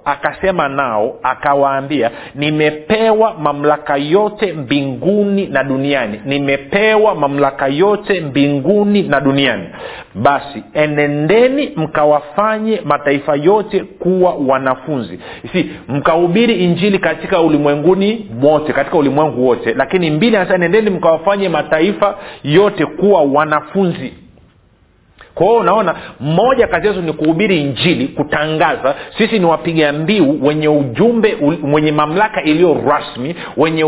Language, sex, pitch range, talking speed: Swahili, male, 145-200 Hz, 110 wpm